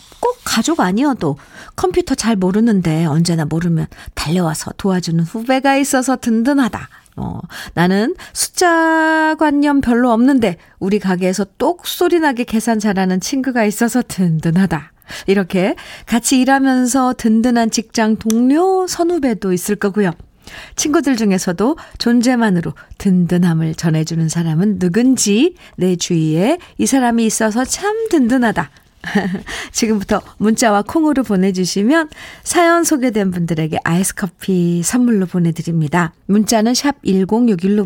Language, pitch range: Korean, 180-270 Hz